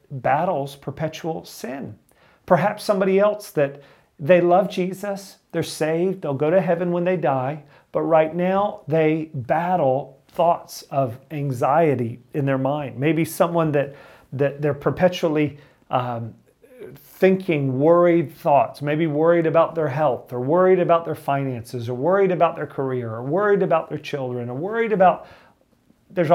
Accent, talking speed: American, 145 wpm